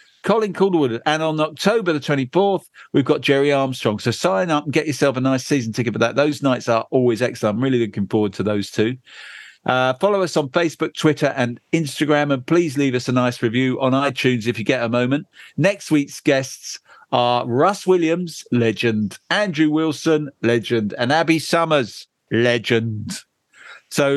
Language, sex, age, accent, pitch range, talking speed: English, male, 50-69, British, 120-155 Hz, 180 wpm